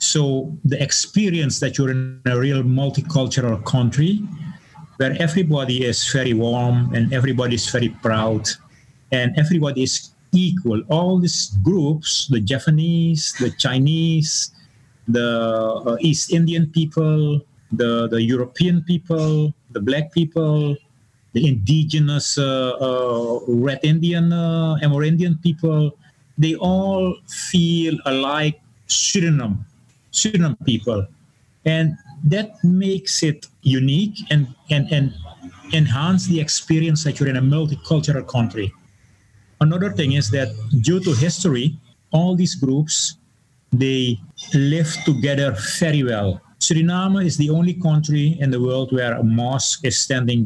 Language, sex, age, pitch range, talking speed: English, male, 30-49, 120-160 Hz, 125 wpm